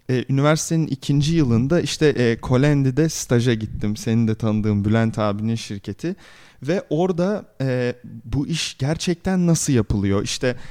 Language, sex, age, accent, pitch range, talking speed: Turkish, male, 30-49, native, 120-155 Hz, 125 wpm